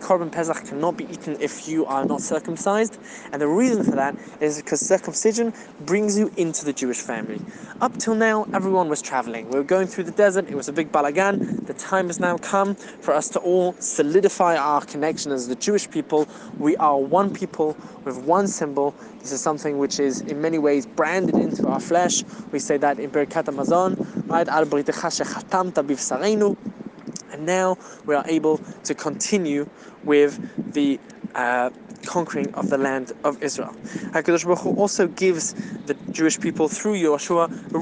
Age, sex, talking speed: 20-39, male, 175 wpm